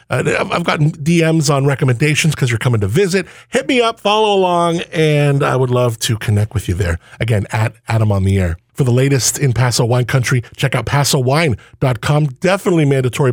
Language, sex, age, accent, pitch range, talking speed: English, male, 50-69, American, 115-155 Hz, 195 wpm